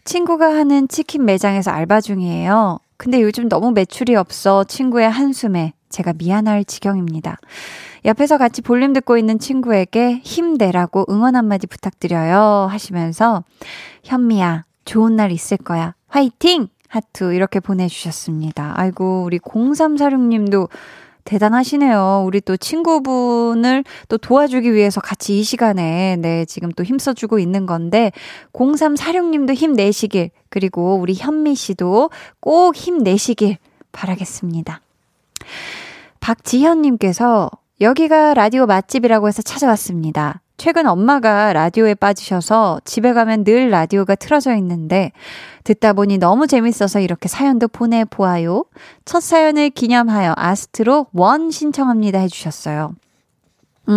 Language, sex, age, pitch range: Korean, female, 20-39, 190-265 Hz